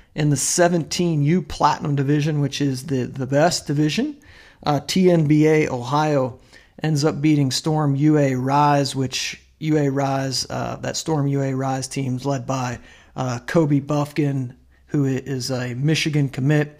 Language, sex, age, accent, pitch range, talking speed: English, male, 40-59, American, 130-155 Hz, 140 wpm